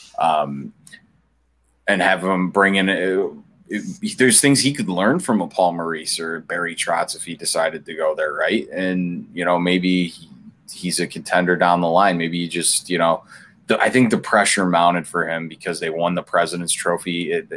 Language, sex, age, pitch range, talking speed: English, male, 20-39, 85-95 Hz, 200 wpm